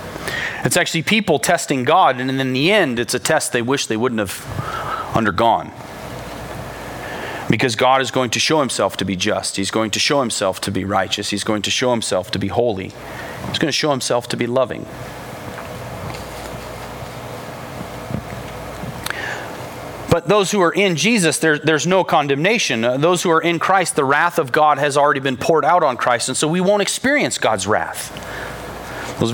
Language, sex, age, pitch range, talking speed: English, male, 30-49, 120-160 Hz, 175 wpm